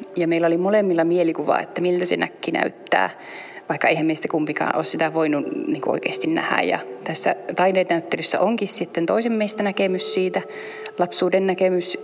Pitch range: 160-195 Hz